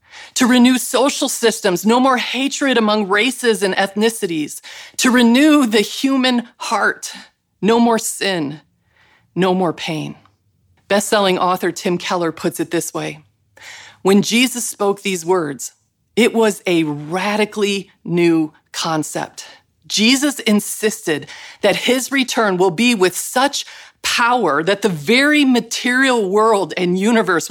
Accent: American